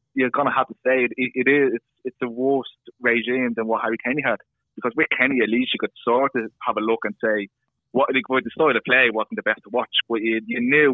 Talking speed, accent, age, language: 265 wpm, British, 20-39, English